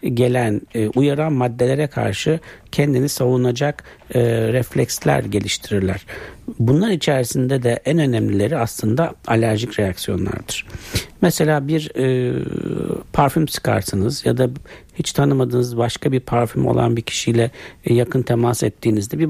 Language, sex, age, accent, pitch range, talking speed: Turkish, male, 60-79, native, 110-130 Hz, 105 wpm